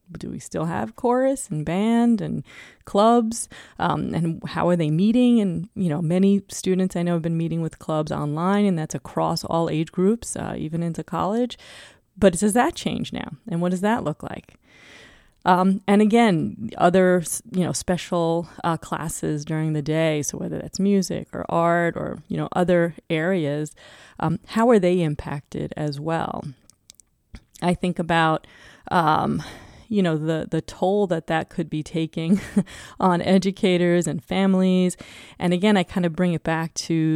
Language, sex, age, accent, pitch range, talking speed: English, female, 30-49, American, 160-190 Hz, 170 wpm